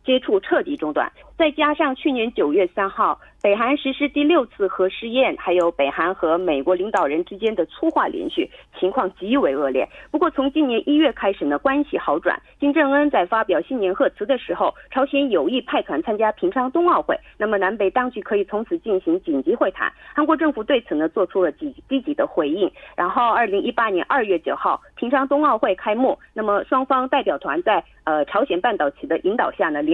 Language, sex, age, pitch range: Korean, female, 30-49, 205-300 Hz